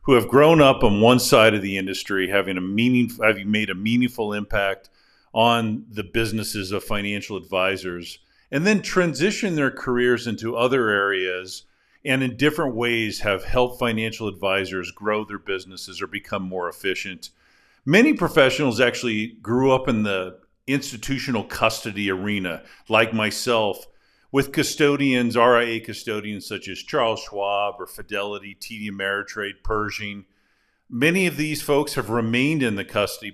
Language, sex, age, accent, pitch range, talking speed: English, male, 50-69, American, 100-130 Hz, 145 wpm